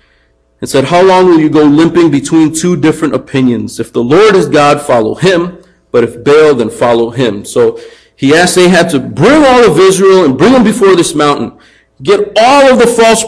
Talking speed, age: 210 wpm, 40-59